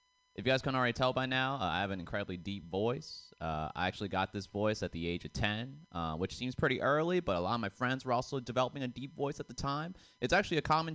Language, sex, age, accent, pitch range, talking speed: English, male, 30-49, American, 90-130 Hz, 275 wpm